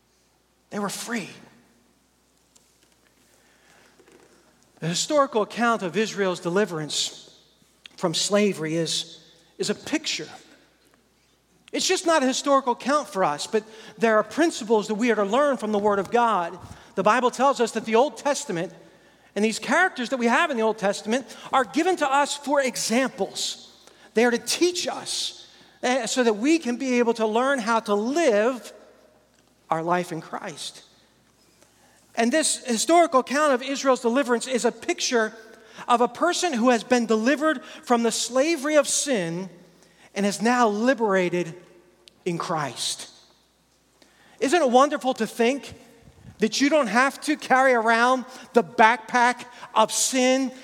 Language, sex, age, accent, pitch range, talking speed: English, male, 50-69, American, 210-265 Hz, 150 wpm